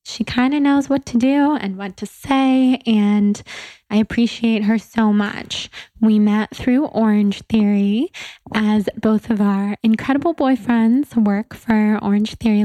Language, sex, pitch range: English, female, 210-245 Hz